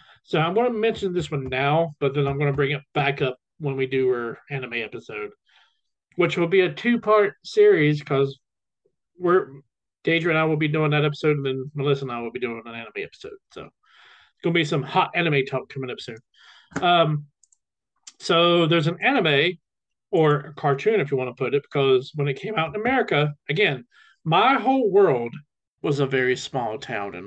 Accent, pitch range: American, 140-190 Hz